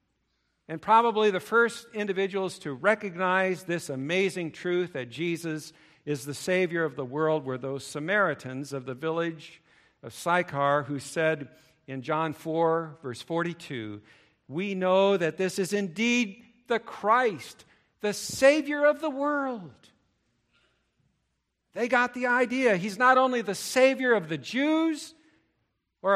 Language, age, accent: English, 50-69, American